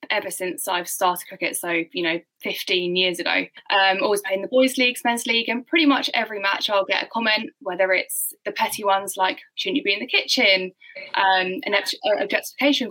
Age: 10-29